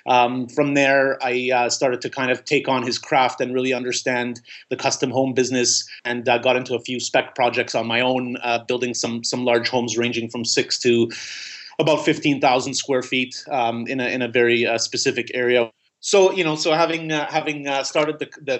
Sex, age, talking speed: male, 30-49, 210 wpm